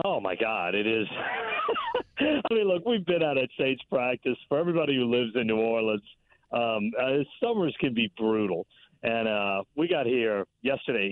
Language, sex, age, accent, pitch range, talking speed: English, male, 50-69, American, 110-150 Hz, 180 wpm